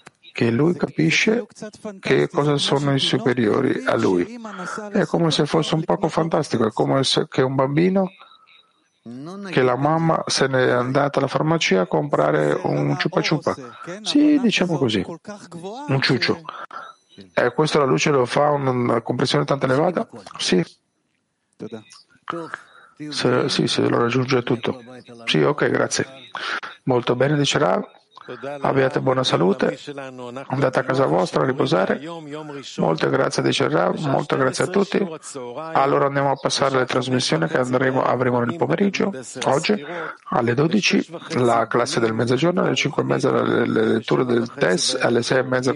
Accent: native